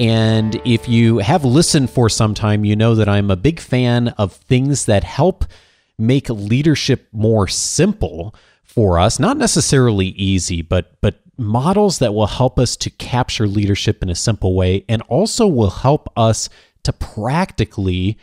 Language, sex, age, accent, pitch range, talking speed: English, male, 30-49, American, 95-120 Hz, 160 wpm